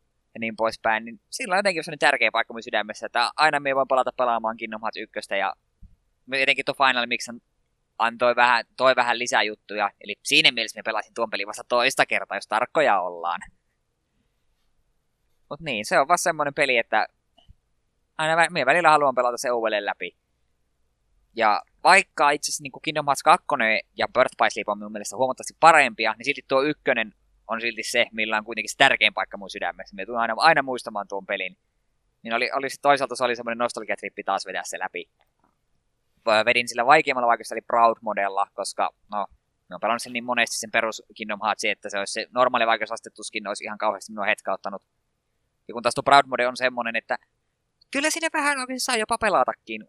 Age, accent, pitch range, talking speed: 20-39, native, 110-135 Hz, 185 wpm